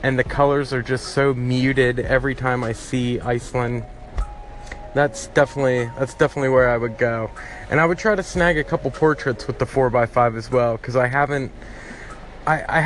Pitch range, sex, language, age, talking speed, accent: 115-140 Hz, male, English, 20-39, 180 wpm, American